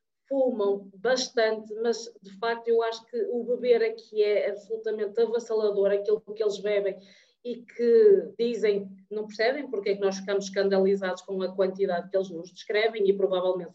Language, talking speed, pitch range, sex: Portuguese, 165 wpm, 200-245 Hz, female